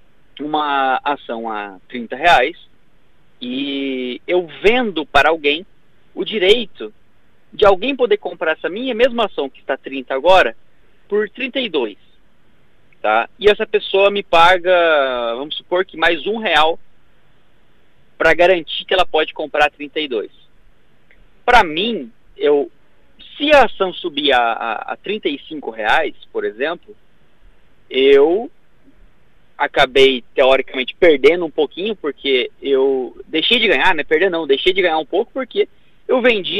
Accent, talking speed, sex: Brazilian, 135 wpm, male